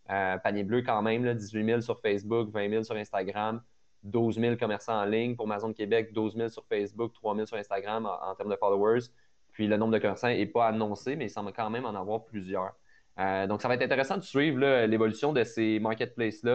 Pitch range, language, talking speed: 105-120 Hz, French, 225 wpm